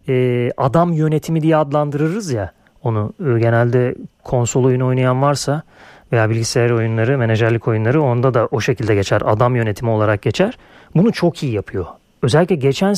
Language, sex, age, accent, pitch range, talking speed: Turkish, male, 40-59, native, 135-170 Hz, 145 wpm